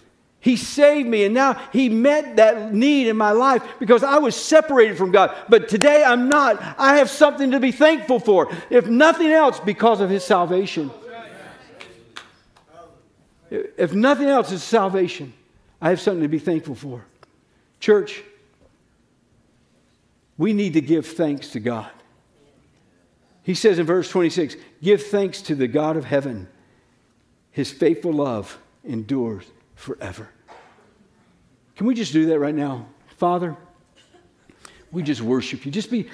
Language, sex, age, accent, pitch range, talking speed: English, male, 60-79, American, 140-225 Hz, 145 wpm